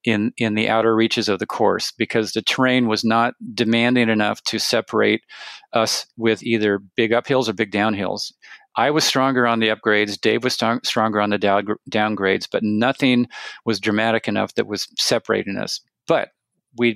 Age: 40-59